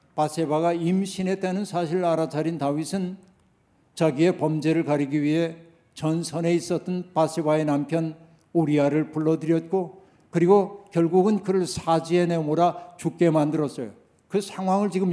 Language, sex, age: Korean, male, 60-79